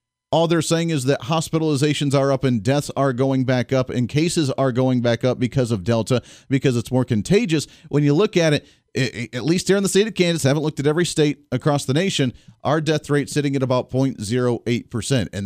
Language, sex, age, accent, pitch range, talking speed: English, male, 40-59, American, 125-160 Hz, 220 wpm